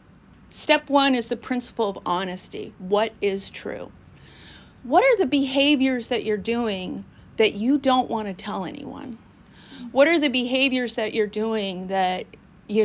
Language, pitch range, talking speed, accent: English, 210-265 Hz, 155 wpm, American